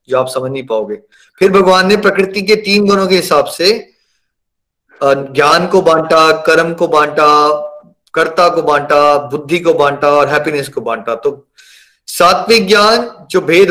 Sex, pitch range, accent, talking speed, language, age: male, 155-215 Hz, native, 80 wpm, Hindi, 30-49